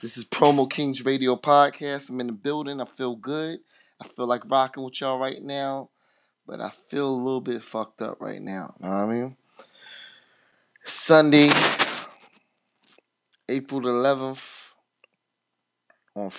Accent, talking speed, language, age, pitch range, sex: American, 145 wpm, English, 30-49, 105-125 Hz, male